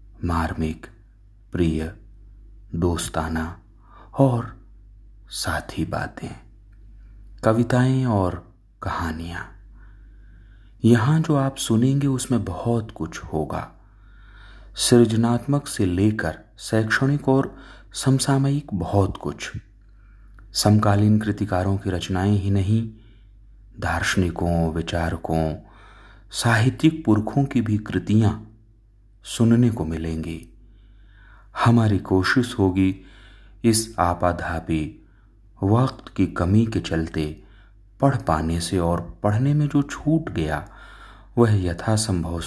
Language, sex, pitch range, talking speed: Hindi, male, 90-110 Hz, 90 wpm